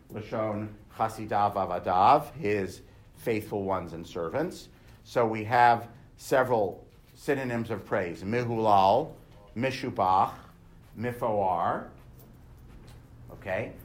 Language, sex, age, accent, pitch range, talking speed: English, male, 50-69, American, 105-125 Hz, 80 wpm